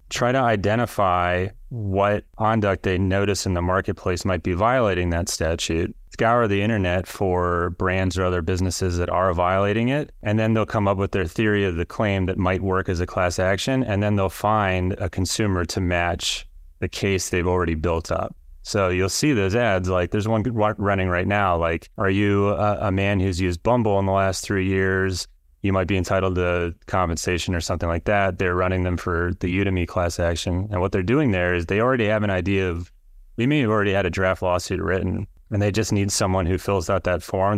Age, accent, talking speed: 30-49, American, 210 wpm